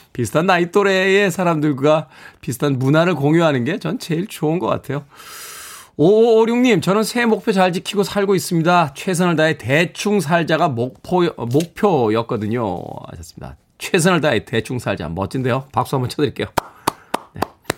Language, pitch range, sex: Korean, 130-170 Hz, male